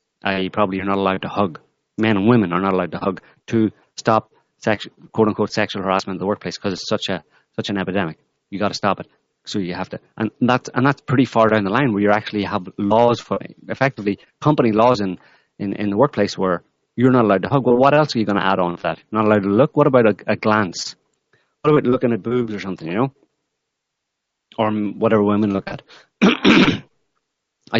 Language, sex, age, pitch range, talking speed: English, male, 30-49, 100-120 Hz, 230 wpm